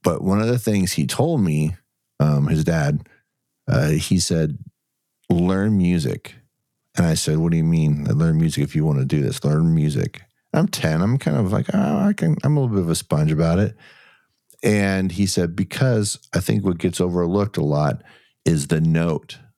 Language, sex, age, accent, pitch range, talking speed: English, male, 50-69, American, 75-100 Hz, 210 wpm